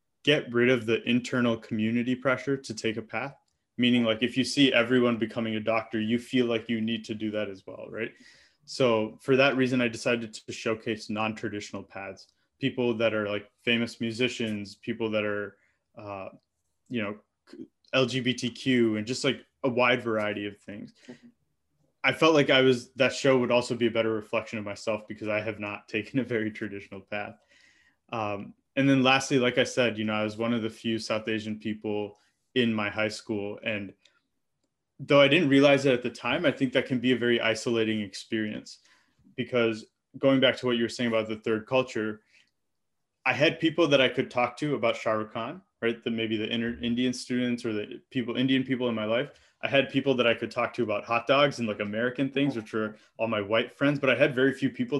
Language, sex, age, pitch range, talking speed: Hindi, male, 20-39, 110-130 Hz, 210 wpm